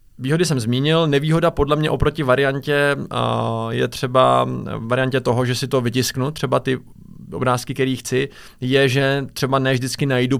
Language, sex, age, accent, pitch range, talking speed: Czech, male, 20-39, native, 115-130 Hz, 155 wpm